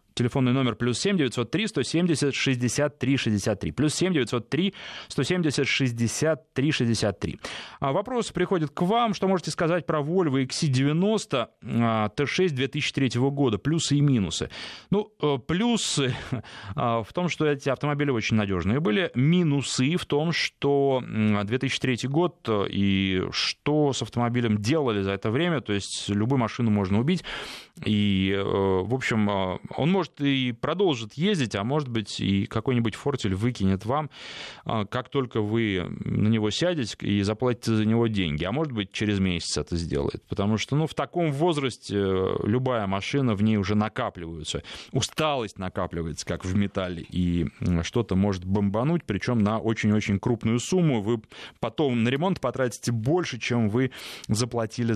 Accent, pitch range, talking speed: native, 105-145 Hz, 140 wpm